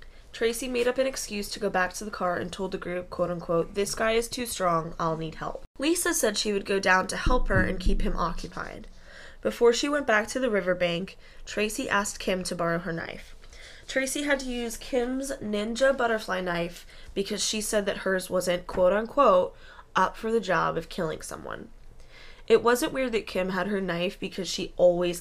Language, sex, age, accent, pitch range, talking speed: English, female, 10-29, American, 180-240 Hz, 200 wpm